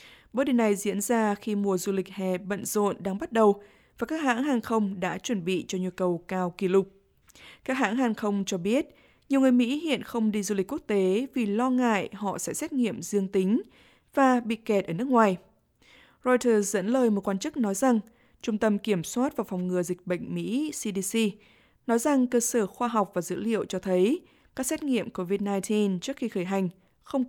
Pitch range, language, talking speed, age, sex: 190-245 Hz, Vietnamese, 220 wpm, 20-39, female